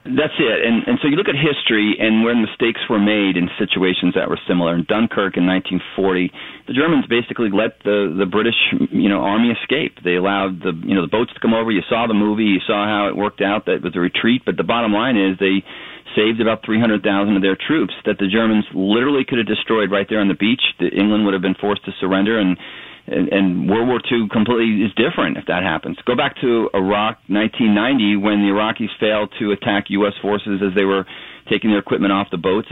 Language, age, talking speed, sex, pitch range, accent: English, 40-59, 225 wpm, male, 95-115 Hz, American